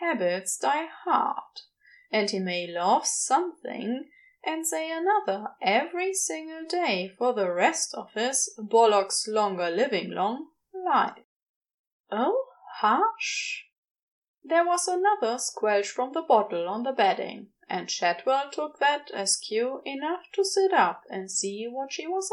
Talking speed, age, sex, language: 135 wpm, 20-39, female, English